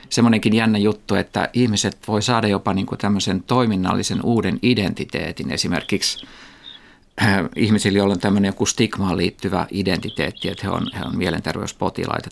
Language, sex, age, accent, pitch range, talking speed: Finnish, male, 50-69, native, 95-115 Hz, 130 wpm